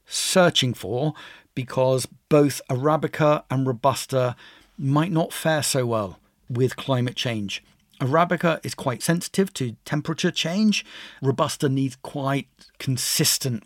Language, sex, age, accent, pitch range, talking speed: English, male, 50-69, British, 125-155 Hz, 115 wpm